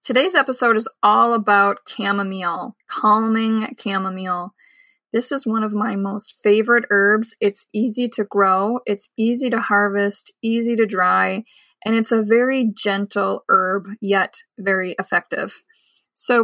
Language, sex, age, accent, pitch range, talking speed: English, female, 20-39, American, 200-240 Hz, 135 wpm